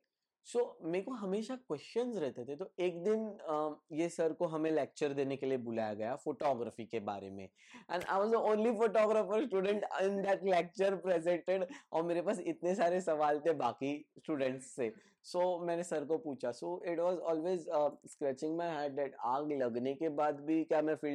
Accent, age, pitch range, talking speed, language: Indian, 20-39, 140-175 Hz, 155 wpm, English